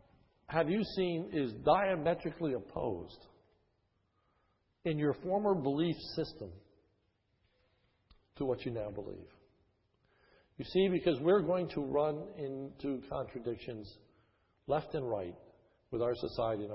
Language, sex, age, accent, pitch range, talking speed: English, male, 60-79, American, 105-150 Hz, 115 wpm